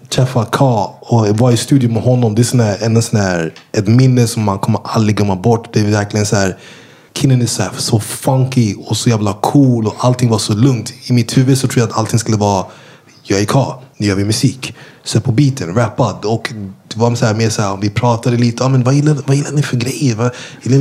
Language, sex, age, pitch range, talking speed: English, male, 20-39, 110-135 Hz, 220 wpm